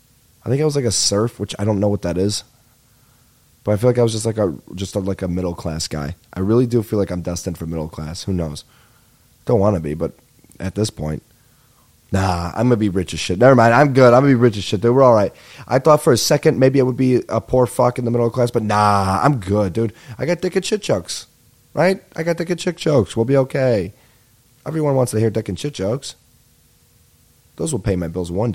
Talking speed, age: 260 wpm, 20-39